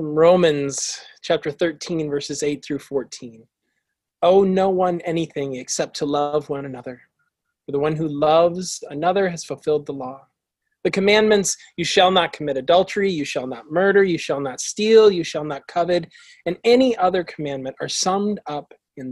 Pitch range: 140-175 Hz